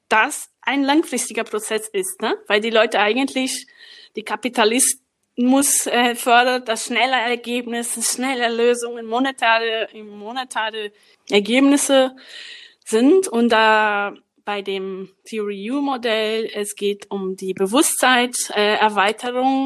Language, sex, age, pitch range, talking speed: German, female, 20-39, 215-260 Hz, 115 wpm